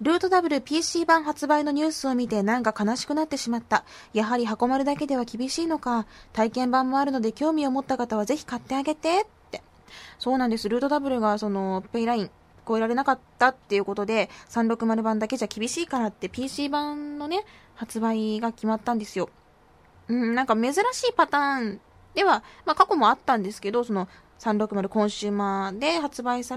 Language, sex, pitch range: Japanese, female, 210-270 Hz